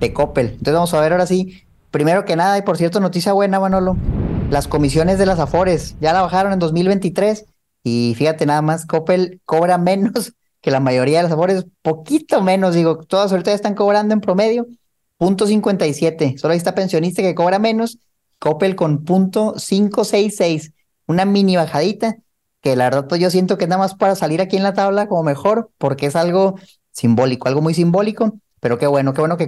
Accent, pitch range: Mexican, 145-190 Hz